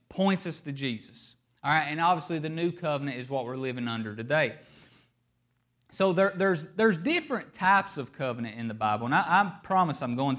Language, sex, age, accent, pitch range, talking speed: English, male, 30-49, American, 120-175 Hz, 190 wpm